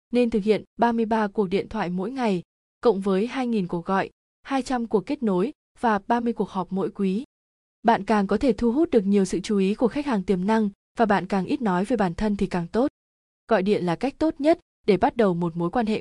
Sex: female